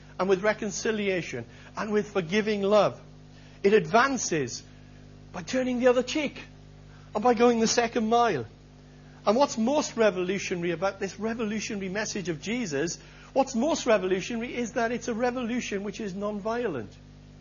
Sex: male